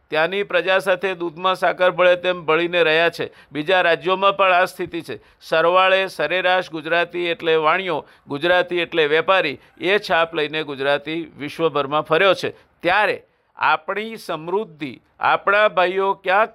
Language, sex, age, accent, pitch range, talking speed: Gujarati, male, 50-69, native, 155-185 Hz, 125 wpm